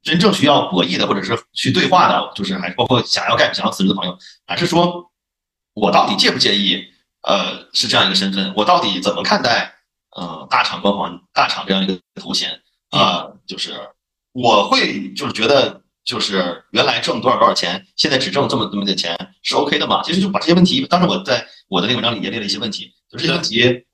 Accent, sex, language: native, male, Chinese